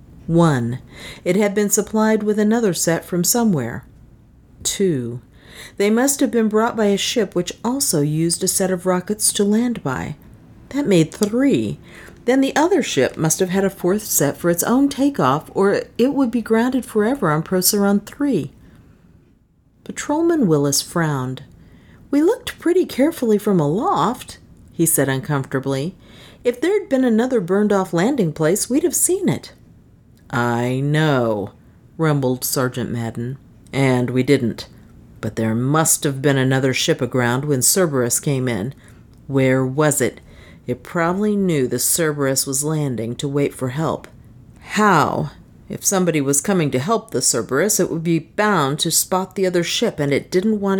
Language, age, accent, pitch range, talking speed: English, 50-69, American, 135-210 Hz, 160 wpm